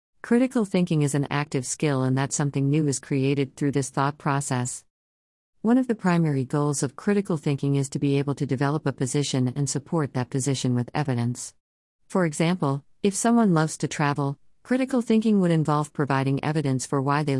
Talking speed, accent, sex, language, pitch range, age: 185 wpm, American, female, English, 135-160 Hz, 50-69